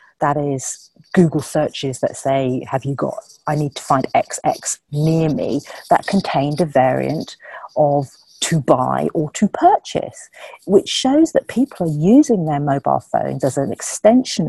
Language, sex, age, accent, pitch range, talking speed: English, female, 40-59, British, 145-215 Hz, 155 wpm